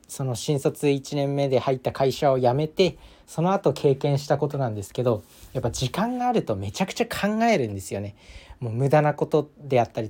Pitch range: 125-180 Hz